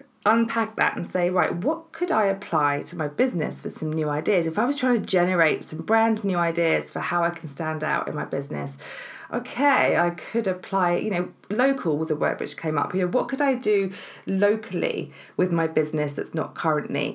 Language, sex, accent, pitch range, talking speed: English, female, British, 155-215 Hz, 215 wpm